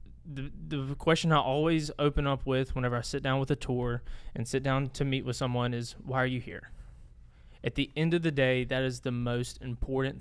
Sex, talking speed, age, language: male, 225 wpm, 20-39, English